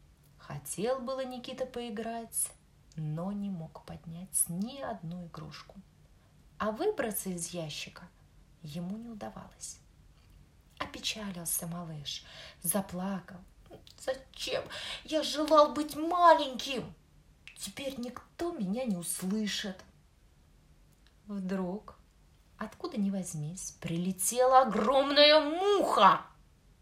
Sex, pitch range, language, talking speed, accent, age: female, 175-260 Hz, Russian, 85 wpm, native, 20-39